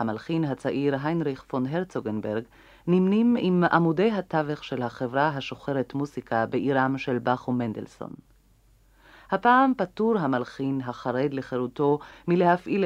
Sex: female